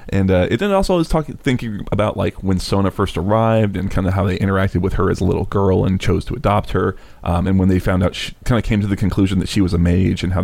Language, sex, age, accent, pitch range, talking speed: English, male, 30-49, American, 90-100 Hz, 285 wpm